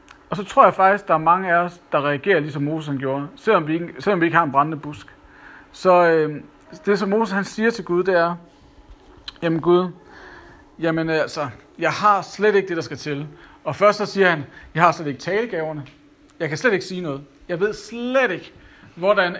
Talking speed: 220 wpm